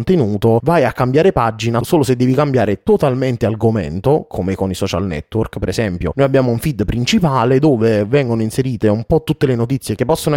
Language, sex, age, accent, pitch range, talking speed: Italian, male, 30-49, native, 110-140 Hz, 185 wpm